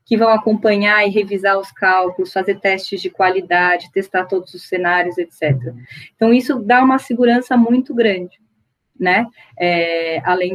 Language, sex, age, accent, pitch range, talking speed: Portuguese, female, 20-39, Brazilian, 185-230 Hz, 140 wpm